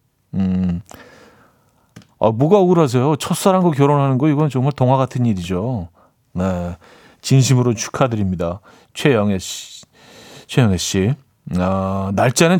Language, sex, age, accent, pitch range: Korean, male, 40-59, native, 100-140 Hz